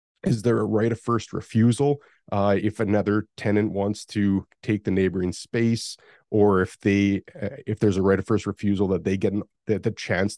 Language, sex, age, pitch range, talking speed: English, male, 30-49, 95-110 Hz, 200 wpm